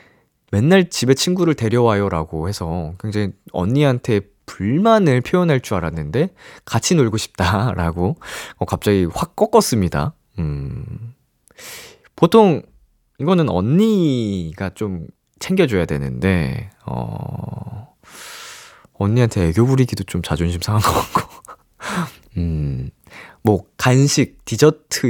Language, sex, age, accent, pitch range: Korean, male, 20-39, native, 90-155 Hz